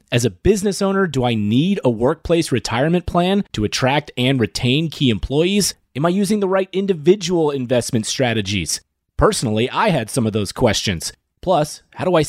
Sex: male